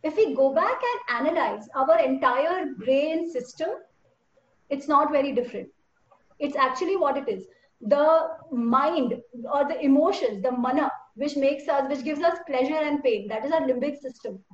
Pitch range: 260-370 Hz